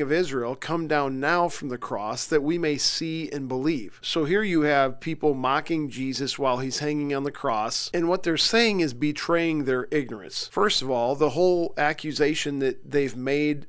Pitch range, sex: 135-160 Hz, male